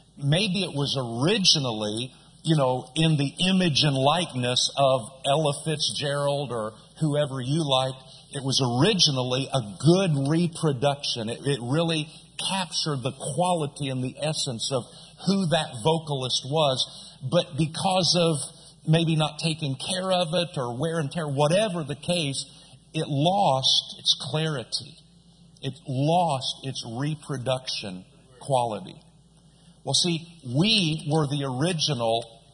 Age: 50-69